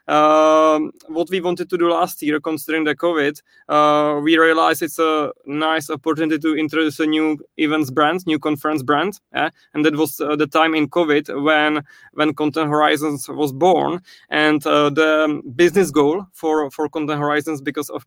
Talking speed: 180 wpm